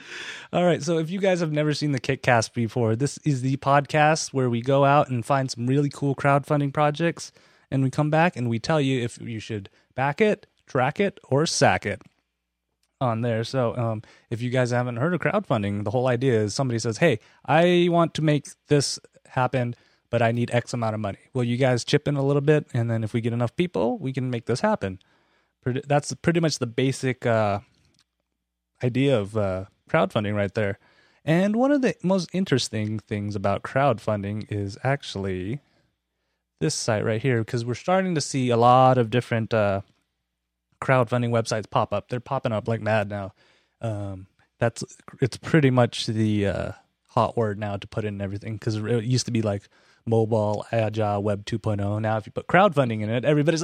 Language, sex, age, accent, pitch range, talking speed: English, male, 20-39, American, 110-145 Hz, 195 wpm